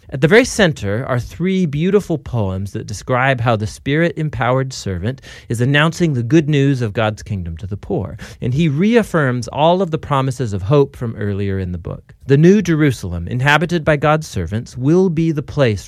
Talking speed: 190 wpm